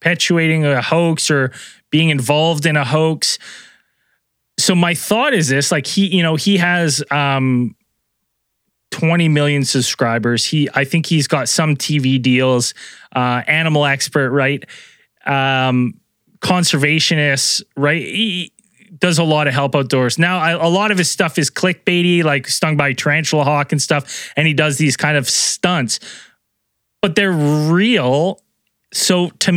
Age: 20-39